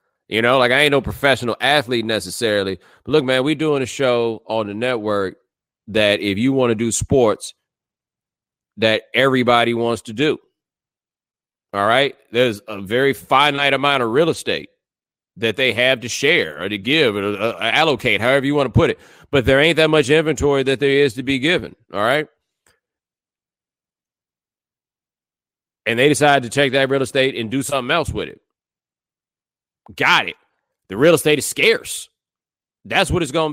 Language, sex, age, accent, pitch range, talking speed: English, male, 30-49, American, 110-145 Hz, 170 wpm